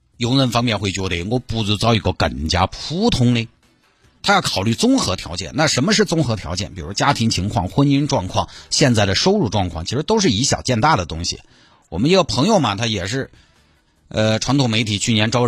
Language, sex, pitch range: Chinese, male, 100-140 Hz